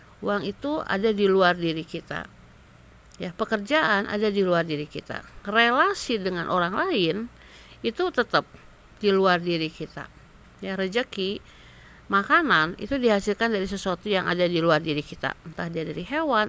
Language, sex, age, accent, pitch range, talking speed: Indonesian, female, 50-69, native, 165-225 Hz, 150 wpm